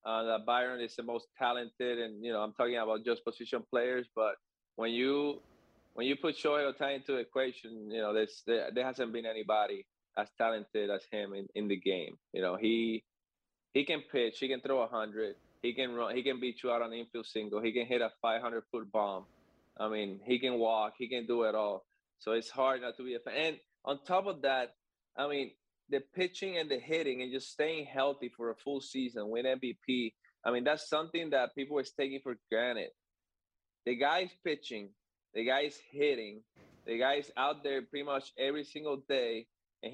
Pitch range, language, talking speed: 115-140 Hz, English, 205 wpm